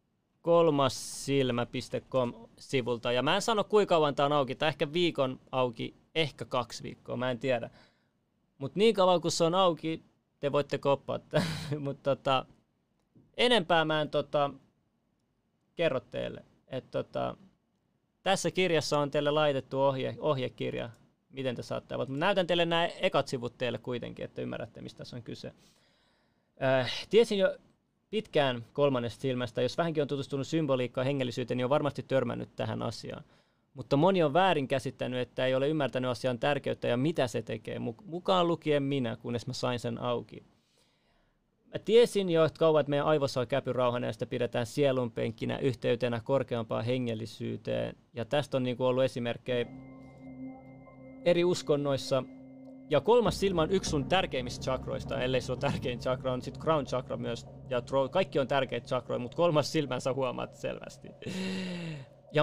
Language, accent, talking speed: Finnish, native, 155 wpm